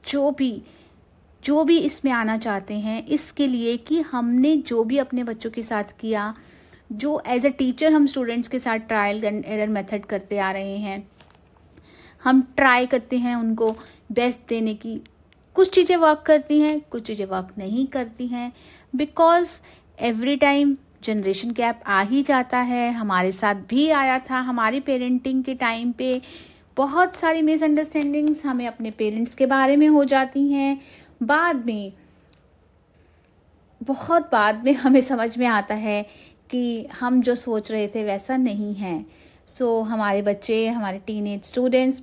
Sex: female